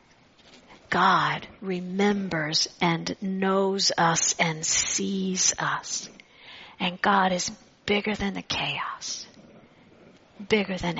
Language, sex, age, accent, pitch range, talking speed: English, female, 50-69, American, 180-205 Hz, 95 wpm